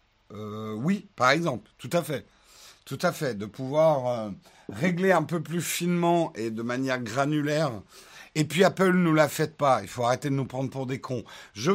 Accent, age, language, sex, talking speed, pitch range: French, 50-69, French, male, 200 wpm, 120-155 Hz